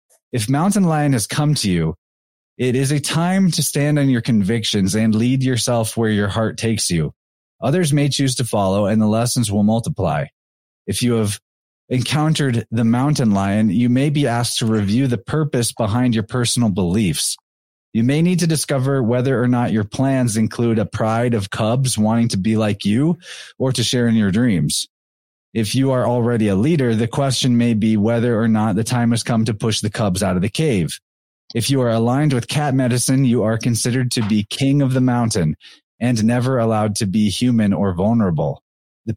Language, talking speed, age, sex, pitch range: English, 200 wpm, 20-39, male, 110-135 Hz